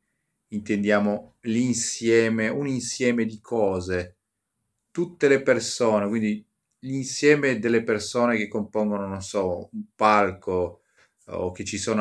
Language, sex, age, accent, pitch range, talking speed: Italian, male, 30-49, native, 95-115 Hz, 115 wpm